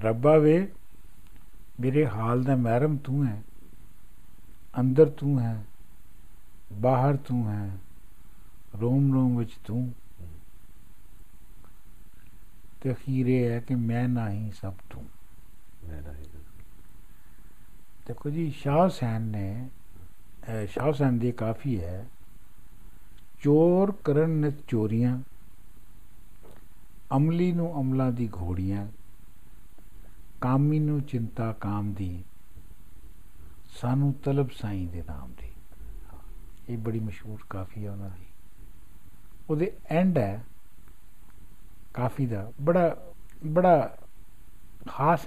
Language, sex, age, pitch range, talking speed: Punjabi, male, 60-79, 90-140 Hz, 95 wpm